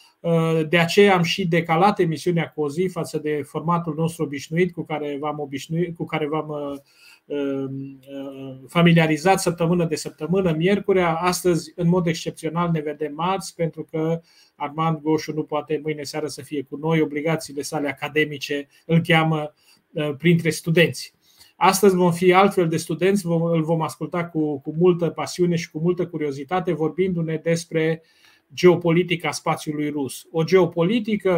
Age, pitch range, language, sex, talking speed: 30-49, 155-180 Hz, Romanian, male, 140 wpm